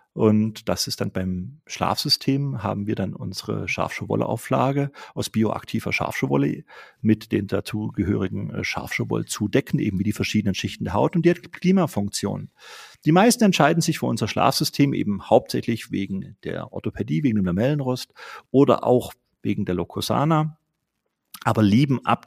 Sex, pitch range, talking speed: male, 105-130 Hz, 145 wpm